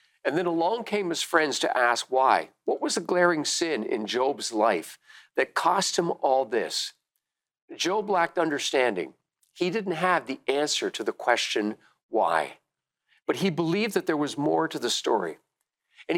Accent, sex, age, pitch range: American, male, 50-69, 135-190 Hz